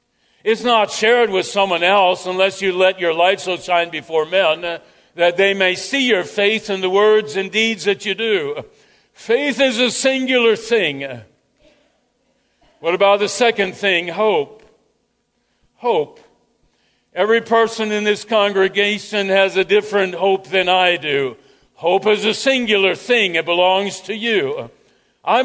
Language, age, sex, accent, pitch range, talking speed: English, 60-79, male, American, 190-225 Hz, 150 wpm